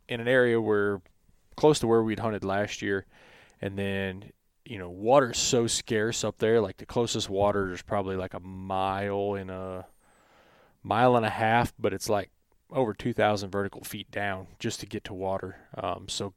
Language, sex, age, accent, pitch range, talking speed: English, male, 20-39, American, 95-110 Hz, 185 wpm